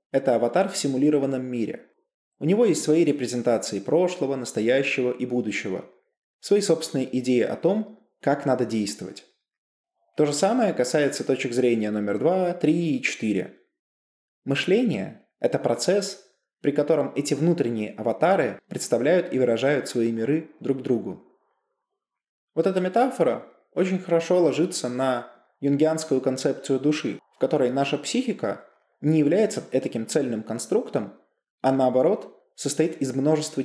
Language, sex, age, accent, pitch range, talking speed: Russian, male, 20-39, native, 125-175 Hz, 130 wpm